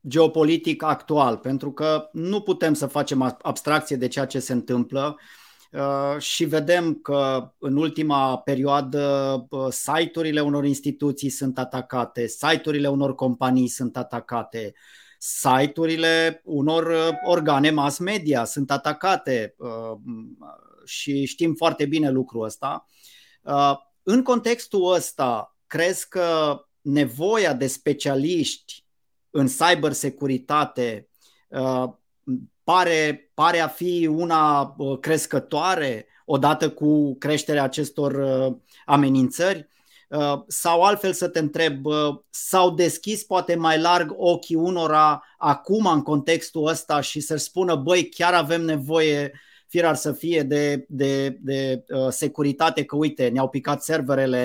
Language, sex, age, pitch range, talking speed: Romanian, male, 30-49, 135-165 Hz, 115 wpm